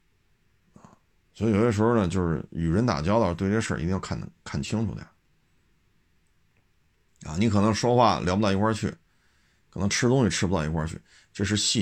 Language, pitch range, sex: Chinese, 85-105 Hz, male